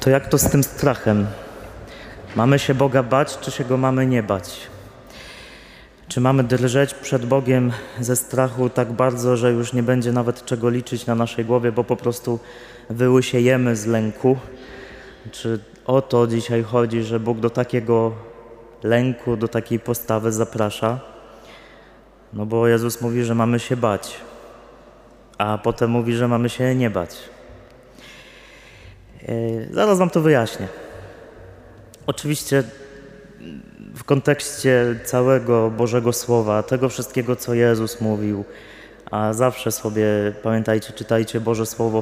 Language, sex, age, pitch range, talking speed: Polish, male, 20-39, 115-130 Hz, 135 wpm